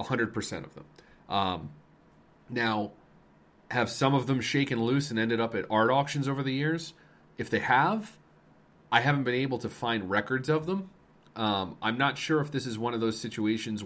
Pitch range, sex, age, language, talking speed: 105-130 Hz, male, 30-49, English, 190 wpm